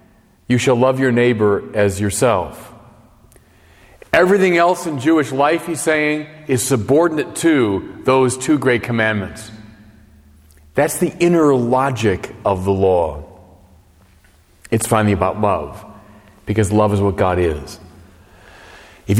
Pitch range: 105-170 Hz